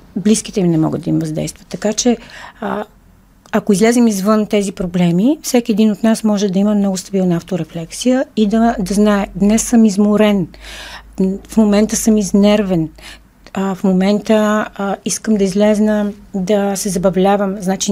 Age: 40-59